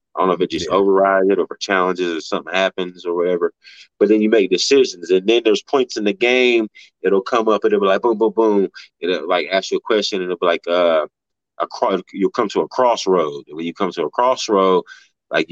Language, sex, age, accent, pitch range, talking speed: English, male, 30-49, American, 90-110 Hz, 250 wpm